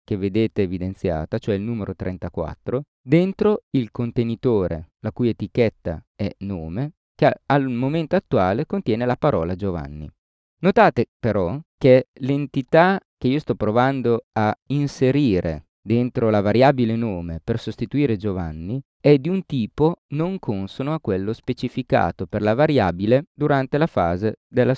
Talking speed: 135 wpm